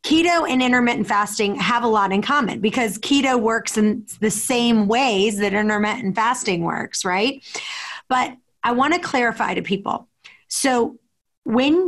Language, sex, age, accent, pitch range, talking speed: English, female, 30-49, American, 205-245 Hz, 145 wpm